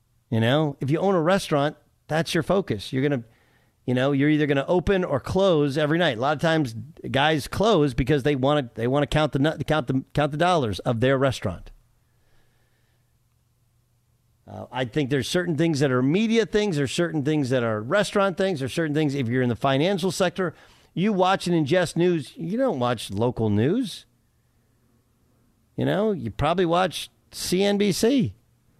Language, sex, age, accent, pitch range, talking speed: English, male, 40-59, American, 115-165 Hz, 180 wpm